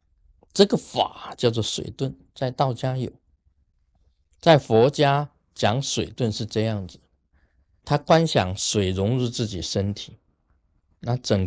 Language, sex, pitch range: Chinese, male, 80-130 Hz